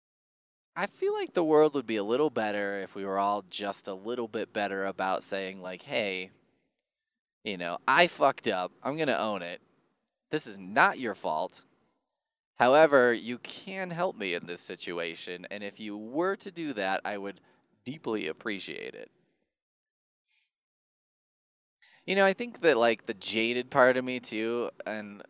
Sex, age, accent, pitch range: male, 20-39, American, 100-160 Hz